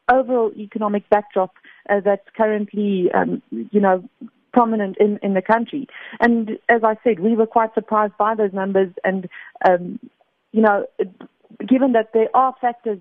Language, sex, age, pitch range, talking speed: English, female, 40-59, 195-225 Hz, 155 wpm